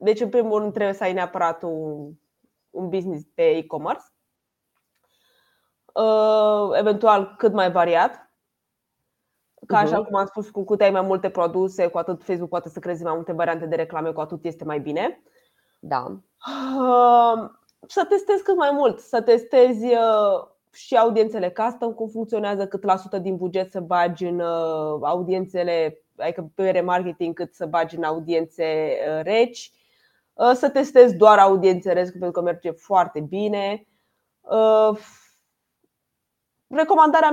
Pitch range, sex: 175-235 Hz, female